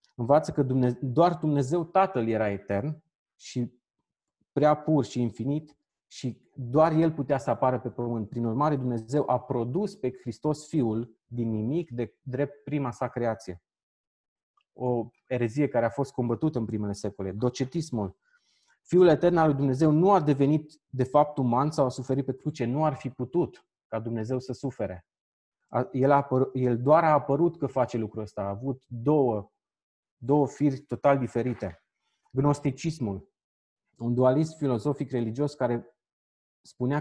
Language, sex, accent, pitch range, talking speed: Romanian, male, native, 120-145 Hz, 150 wpm